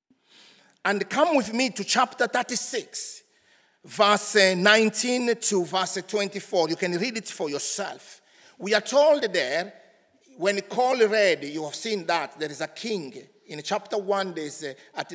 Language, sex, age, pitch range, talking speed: English, male, 50-69, 180-235 Hz, 150 wpm